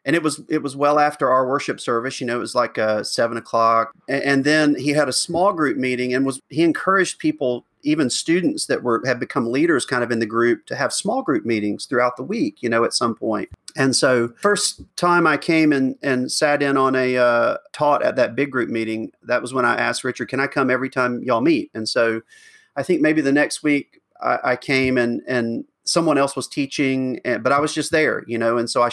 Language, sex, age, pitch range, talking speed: English, male, 40-59, 125-155 Hz, 240 wpm